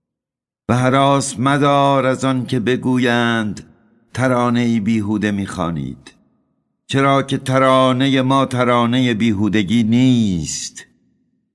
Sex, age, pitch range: male, 60-79, 95-125 Hz